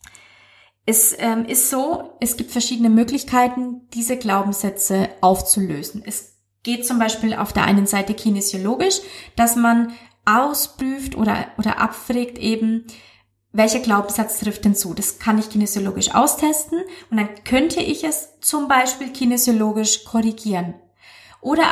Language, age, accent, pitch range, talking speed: German, 20-39, German, 210-260 Hz, 130 wpm